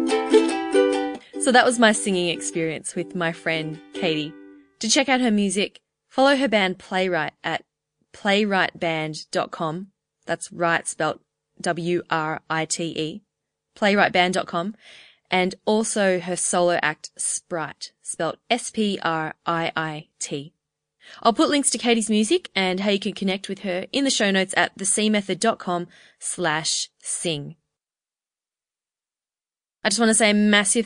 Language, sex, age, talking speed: English, female, 20-39, 120 wpm